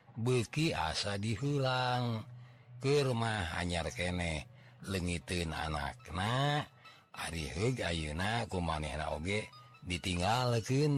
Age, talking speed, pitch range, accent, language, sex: 40-59, 80 wpm, 85-125 Hz, native, Indonesian, male